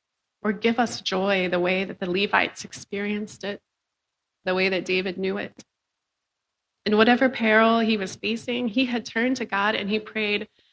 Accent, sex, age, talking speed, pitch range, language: American, female, 30-49, 175 wpm, 190-230 Hz, English